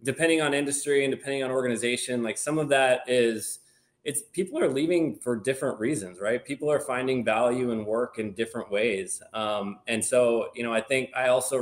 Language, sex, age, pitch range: English, male, 20-39, 110-130 Hz